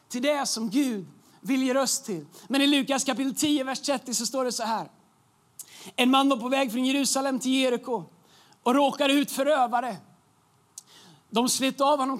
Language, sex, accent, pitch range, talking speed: Swedish, male, native, 230-270 Hz, 180 wpm